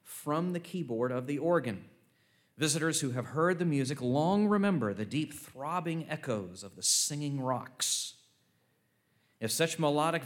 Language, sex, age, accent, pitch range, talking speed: English, male, 40-59, American, 110-155 Hz, 145 wpm